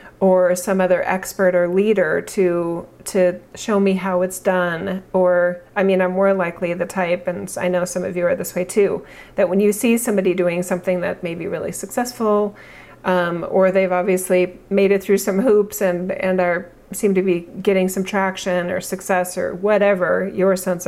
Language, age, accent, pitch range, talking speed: English, 40-59, American, 180-210 Hz, 195 wpm